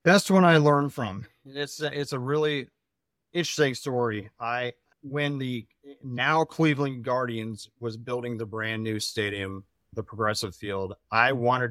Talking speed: 150 wpm